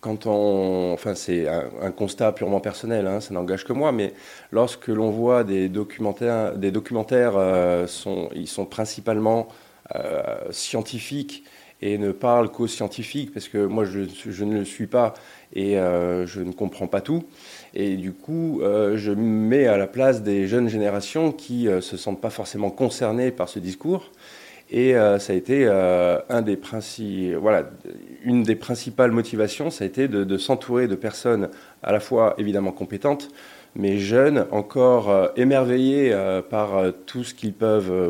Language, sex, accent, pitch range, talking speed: French, male, French, 95-115 Hz, 160 wpm